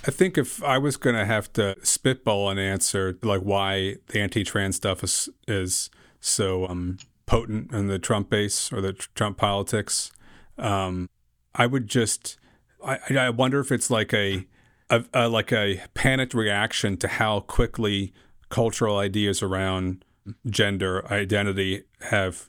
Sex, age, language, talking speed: male, 40-59, English, 145 wpm